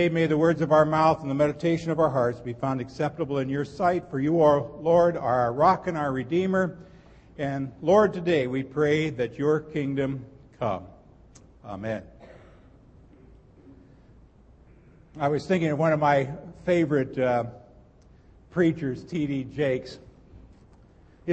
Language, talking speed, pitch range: English, 140 wpm, 130-165 Hz